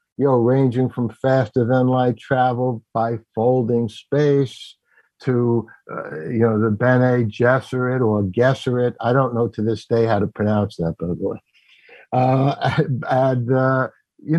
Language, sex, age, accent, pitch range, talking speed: English, male, 60-79, American, 115-140 Hz, 140 wpm